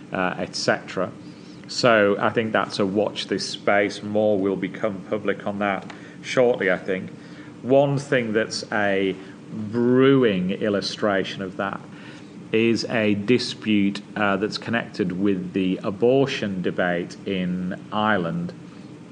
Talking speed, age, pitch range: 120 wpm, 40-59, 95-110 Hz